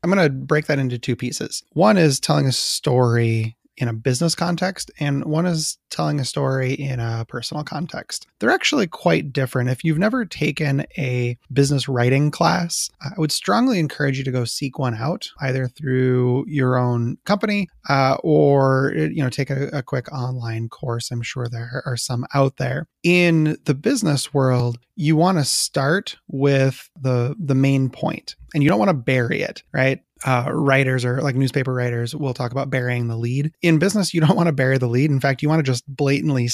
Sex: male